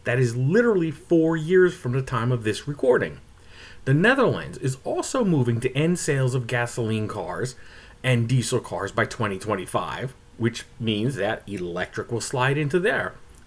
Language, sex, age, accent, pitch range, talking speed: English, male, 30-49, American, 115-160 Hz, 155 wpm